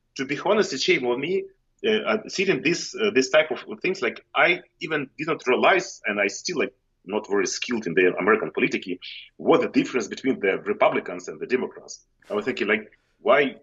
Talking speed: 205 wpm